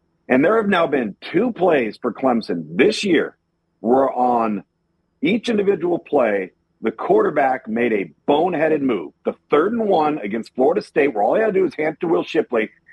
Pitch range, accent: 130-200 Hz, American